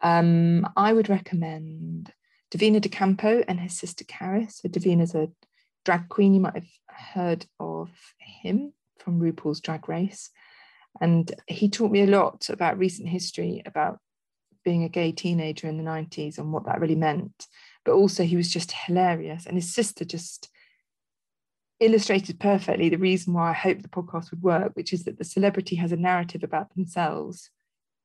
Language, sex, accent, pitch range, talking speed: English, female, British, 170-210 Hz, 165 wpm